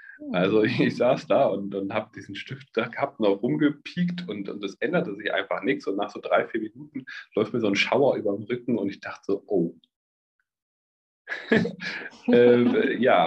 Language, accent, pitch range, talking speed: German, German, 110-175 Hz, 180 wpm